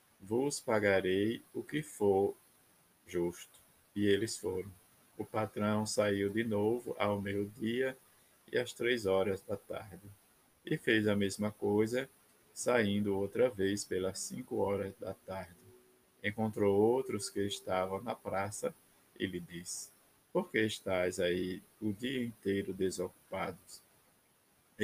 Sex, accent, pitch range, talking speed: male, Brazilian, 95-110 Hz, 130 wpm